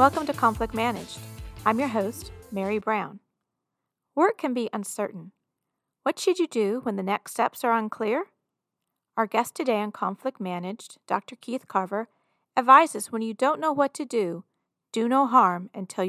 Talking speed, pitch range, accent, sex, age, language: 165 wpm, 195-255 Hz, American, female, 40-59, English